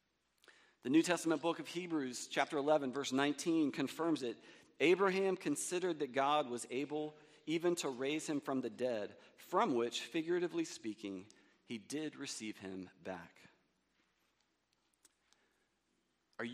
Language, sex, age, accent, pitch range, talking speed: English, male, 40-59, American, 110-155 Hz, 125 wpm